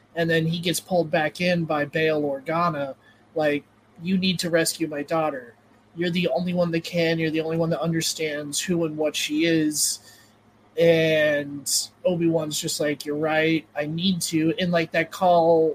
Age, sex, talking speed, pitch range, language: 20-39, male, 180 wpm, 150-175 Hz, English